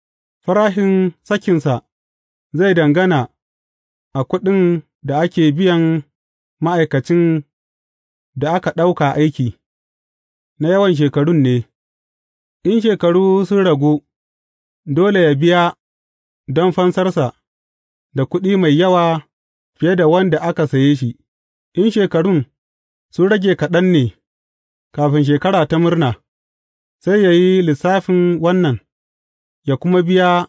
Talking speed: 85 wpm